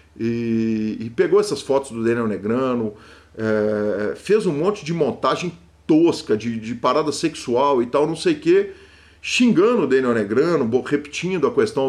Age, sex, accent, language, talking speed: 40-59, male, Brazilian, Portuguese, 160 wpm